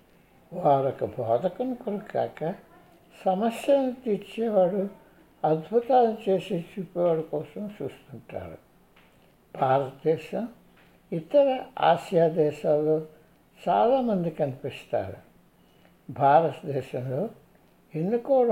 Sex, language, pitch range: male, Hindi, 145-215 Hz